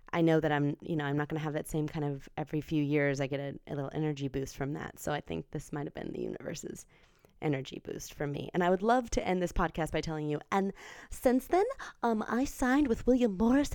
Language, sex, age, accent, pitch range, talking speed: English, female, 20-39, American, 155-210 Hz, 260 wpm